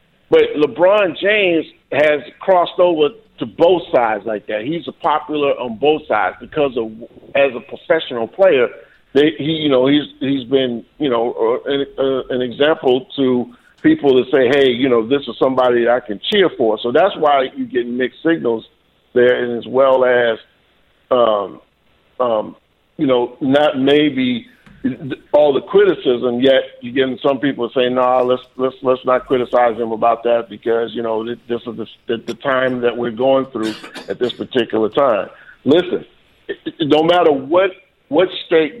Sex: male